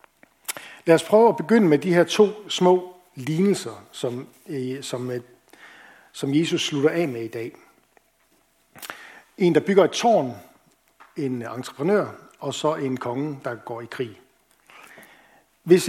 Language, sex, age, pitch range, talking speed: Danish, male, 60-79, 130-175 Hz, 130 wpm